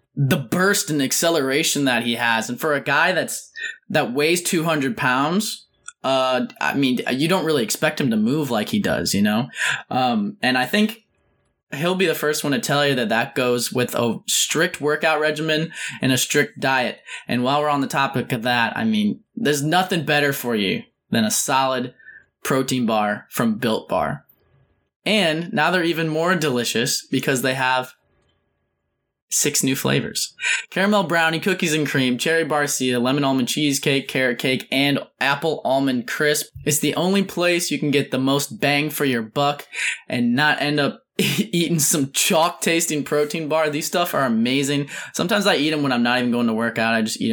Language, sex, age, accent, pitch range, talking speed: English, male, 10-29, American, 130-170 Hz, 190 wpm